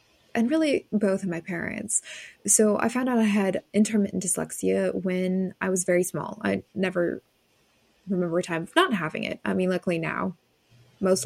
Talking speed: 175 wpm